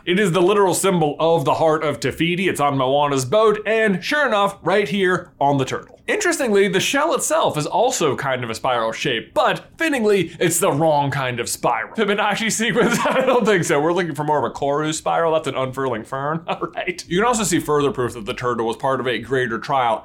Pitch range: 140-205 Hz